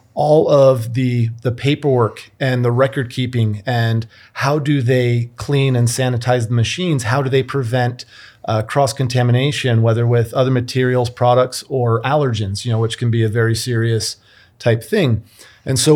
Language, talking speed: English, 160 wpm